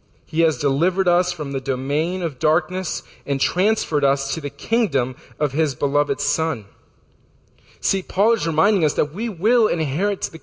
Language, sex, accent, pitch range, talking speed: English, male, American, 135-175 Hz, 165 wpm